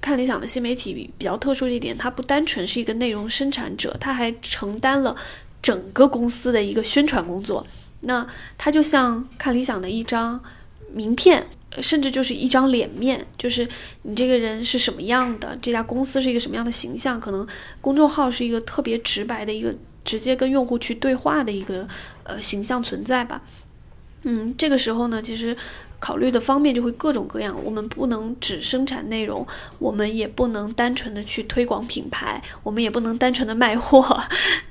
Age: 20-39